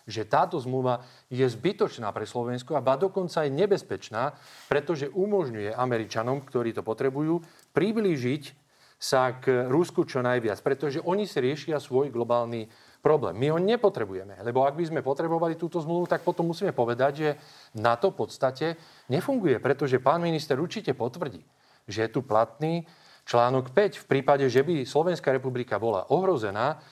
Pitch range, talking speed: 125-165 Hz, 155 wpm